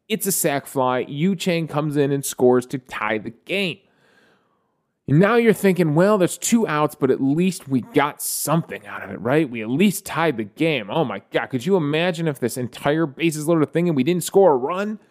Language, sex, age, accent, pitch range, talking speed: English, male, 30-49, American, 140-190 Hz, 220 wpm